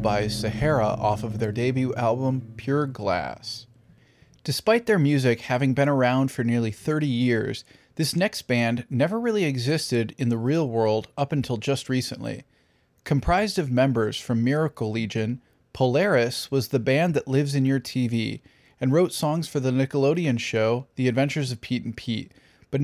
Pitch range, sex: 120-145 Hz, male